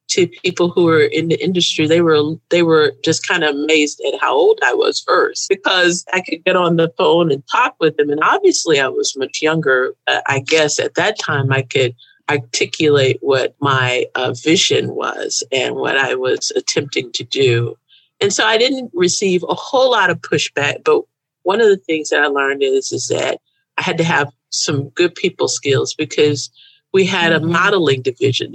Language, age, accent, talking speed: English, 50-69, American, 195 wpm